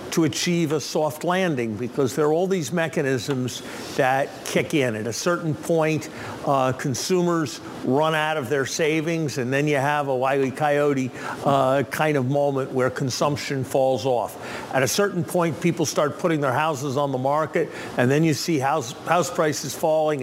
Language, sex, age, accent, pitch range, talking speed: English, male, 50-69, American, 135-160 Hz, 180 wpm